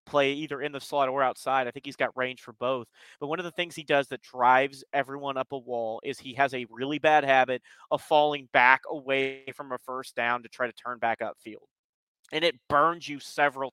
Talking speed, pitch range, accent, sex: 230 wpm, 125-155 Hz, American, male